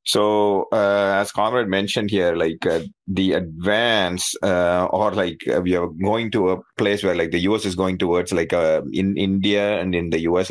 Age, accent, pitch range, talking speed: 30-49, native, 90-100 Hz, 200 wpm